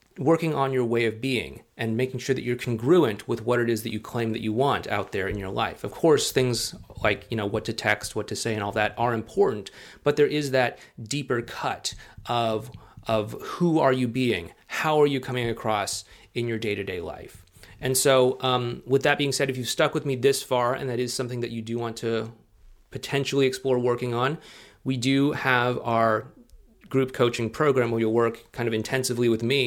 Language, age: English, 30-49